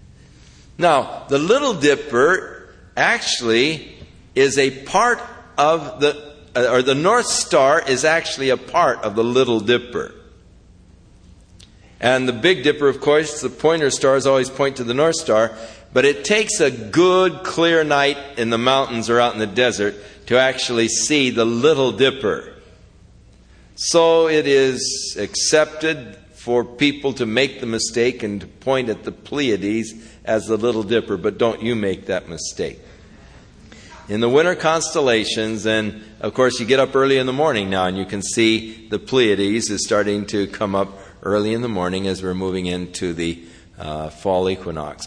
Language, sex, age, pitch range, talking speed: English, male, 60-79, 100-140 Hz, 160 wpm